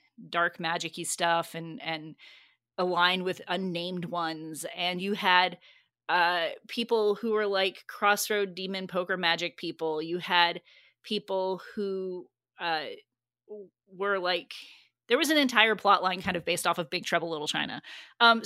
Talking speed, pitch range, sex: 145 wpm, 170-210 Hz, female